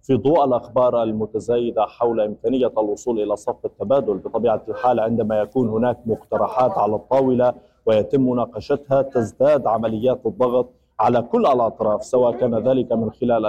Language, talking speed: Arabic, 140 wpm